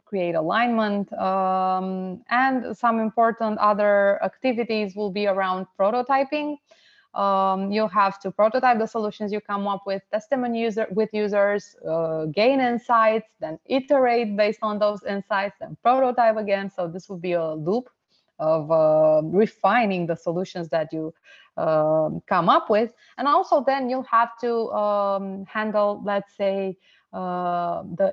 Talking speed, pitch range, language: 145 wpm, 185-225 Hz, English